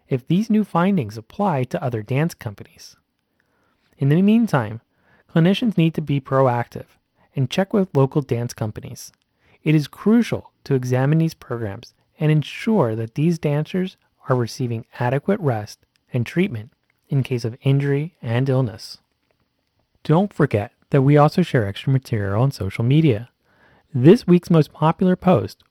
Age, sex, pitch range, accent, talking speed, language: 30-49, male, 120-170 Hz, American, 145 wpm, English